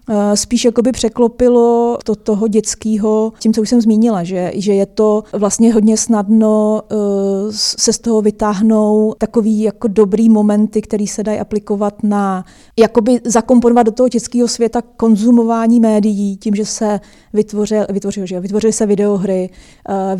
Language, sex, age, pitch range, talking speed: Czech, female, 30-49, 195-220 Hz, 150 wpm